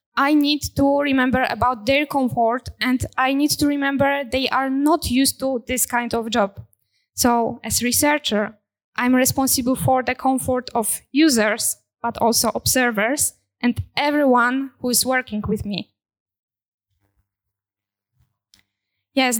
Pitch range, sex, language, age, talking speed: 240-285 Hz, female, Polish, 10-29, 130 wpm